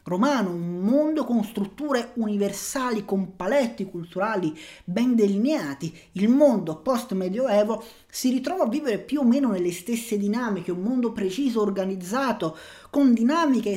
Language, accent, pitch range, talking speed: Italian, native, 185-240 Hz, 130 wpm